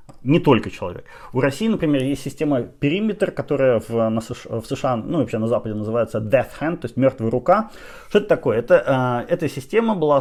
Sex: male